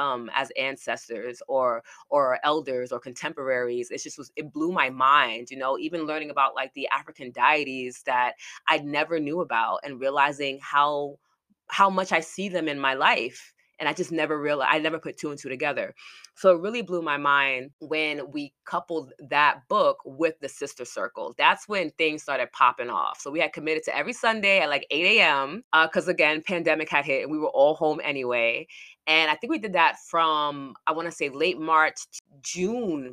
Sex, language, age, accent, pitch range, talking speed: female, English, 20-39, American, 130-160 Hz, 195 wpm